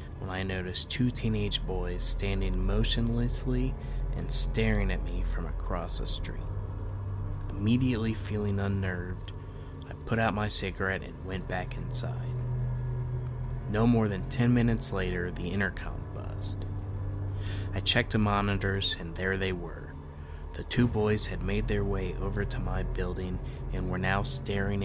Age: 30-49